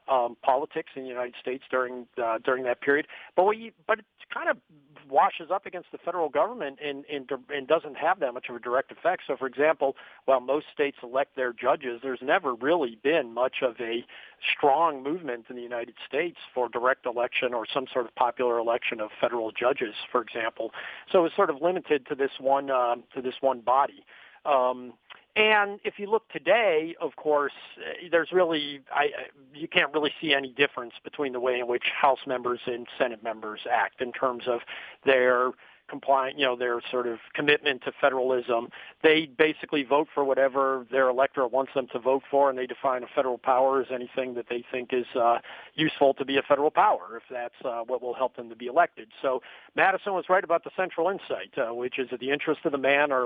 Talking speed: 205 wpm